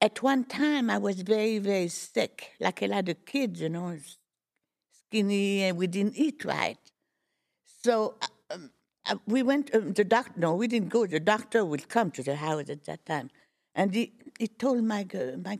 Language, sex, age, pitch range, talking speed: English, female, 60-79, 190-240 Hz, 185 wpm